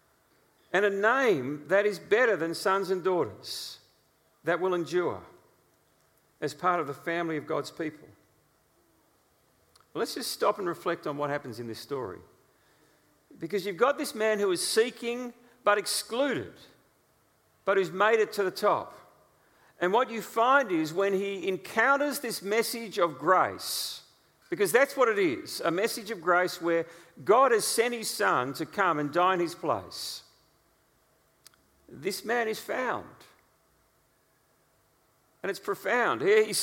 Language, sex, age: English, male, 50-69